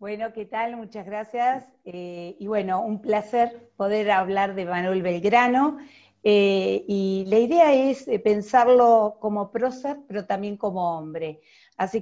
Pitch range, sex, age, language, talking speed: 195-250 Hz, female, 40-59, Spanish, 140 wpm